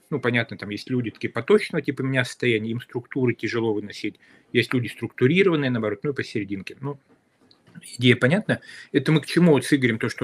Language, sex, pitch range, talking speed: Russian, male, 120-145 Hz, 190 wpm